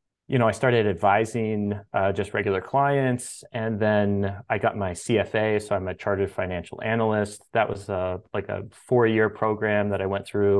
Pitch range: 95-110 Hz